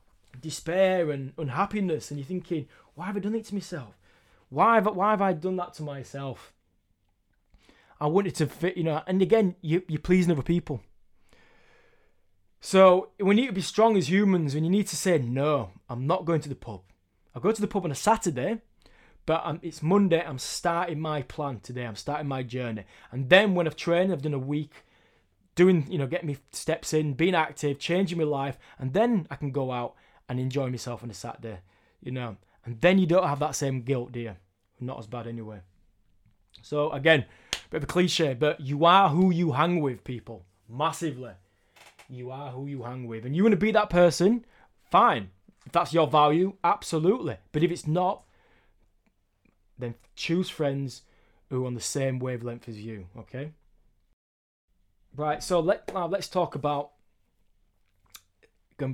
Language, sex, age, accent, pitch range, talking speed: English, male, 20-39, British, 115-175 Hz, 185 wpm